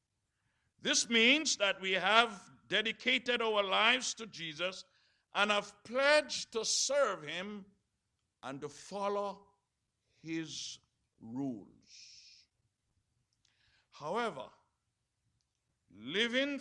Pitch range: 155-245 Hz